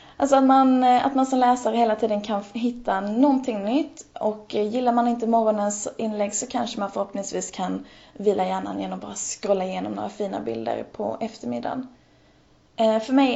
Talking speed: 170 wpm